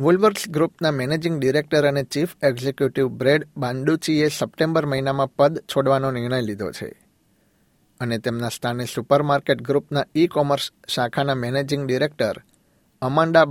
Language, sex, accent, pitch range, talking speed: Gujarati, male, native, 130-150 Hz, 120 wpm